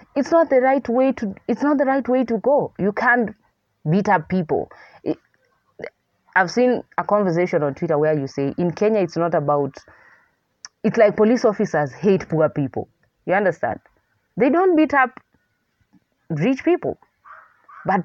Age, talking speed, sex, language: 30-49, 160 wpm, female, English